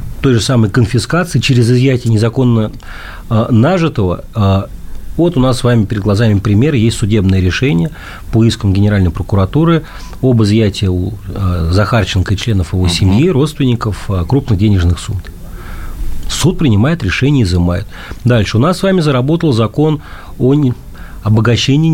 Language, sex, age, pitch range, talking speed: Russian, male, 40-59, 95-125 Hz, 135 wpm